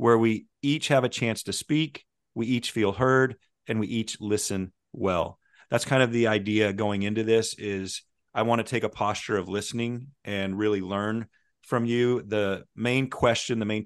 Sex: male